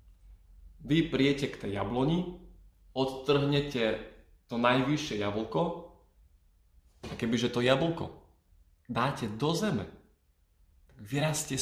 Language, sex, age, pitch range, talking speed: Slovak, male, 20-39, 90-135 Hz, 90 wpm